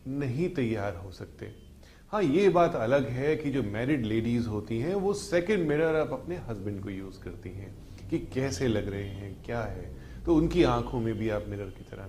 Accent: native